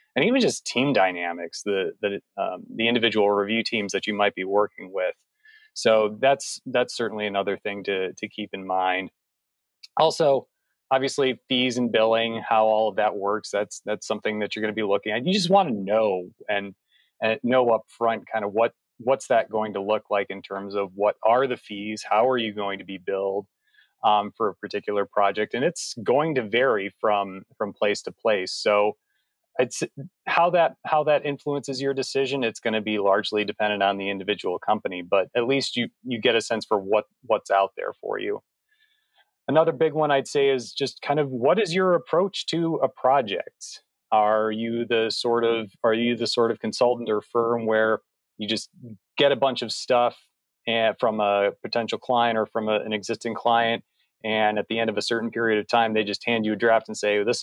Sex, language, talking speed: male, English, 205 wpm